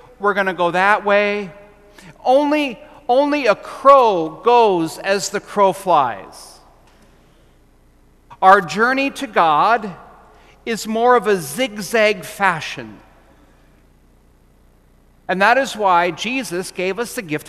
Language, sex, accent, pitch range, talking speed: English, male, American, 165-230 Hz, 115 wpm